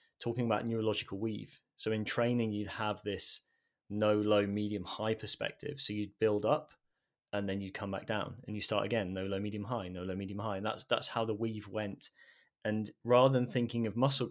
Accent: British